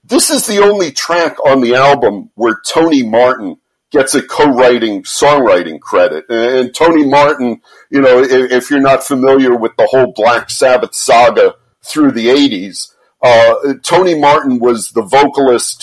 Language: English